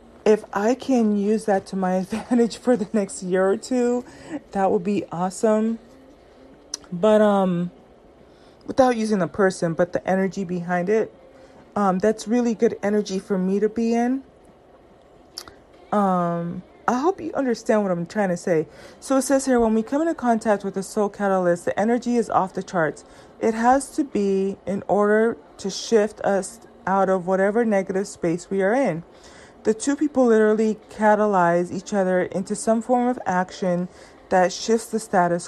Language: English